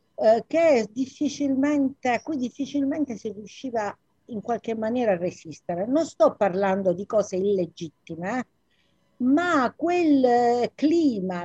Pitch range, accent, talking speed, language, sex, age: 200-280 Hz, native, 115 wpm, Italian, female, 50-69